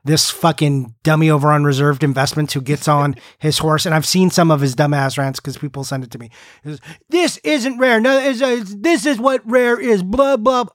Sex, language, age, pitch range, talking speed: male, English, 30-49, 150-215 Hz, 230 wpm